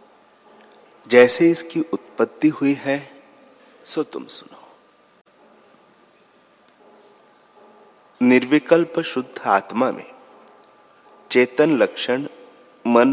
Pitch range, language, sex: 110-130 Hz, Hindi, male